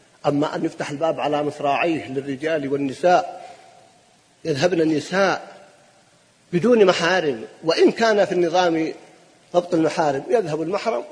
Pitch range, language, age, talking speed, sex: 150-205 Hz, Arabic, 50-69, 110 wpm, male